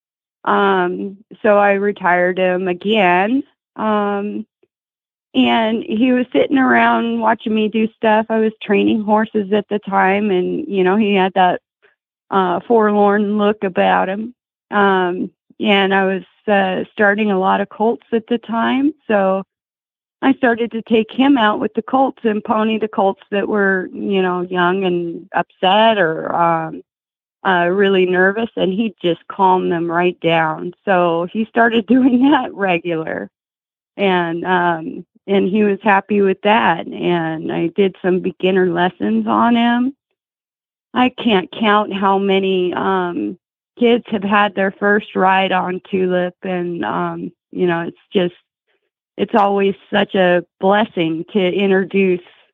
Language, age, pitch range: English, 40-59, 180-220 Hz